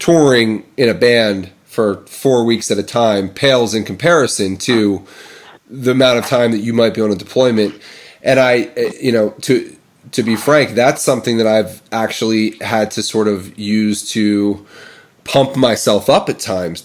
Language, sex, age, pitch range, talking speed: English, male, 30-49, 105-125 Hz, 175 wpm